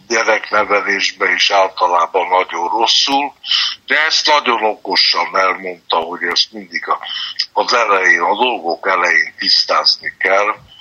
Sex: male